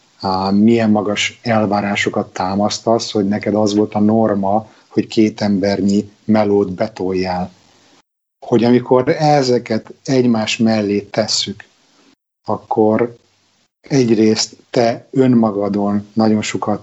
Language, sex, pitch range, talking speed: Hungarian, male, 105-120 Hz, 95 wpm